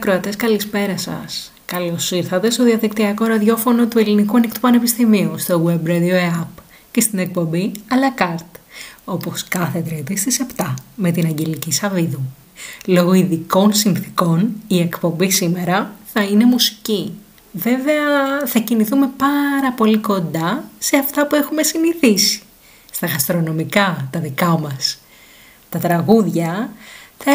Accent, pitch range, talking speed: native, 170-235 Hz, 125 wpm